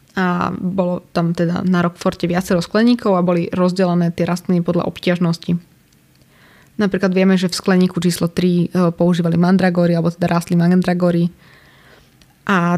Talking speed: 135 wpm